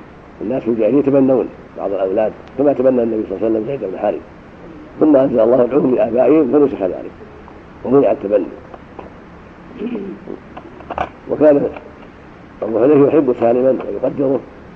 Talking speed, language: 120 wpm, Arabic